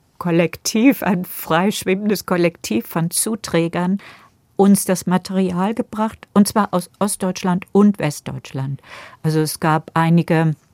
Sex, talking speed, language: female, 110 wpm, German